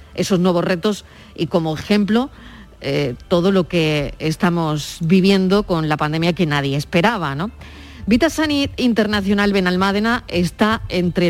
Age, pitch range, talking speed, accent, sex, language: 40-59, 165-200 Hz, 125 wpm, Spanish, female, Spanish